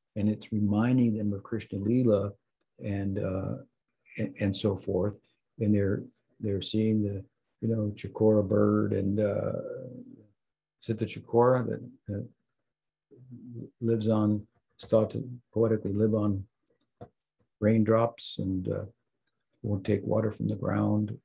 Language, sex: English, male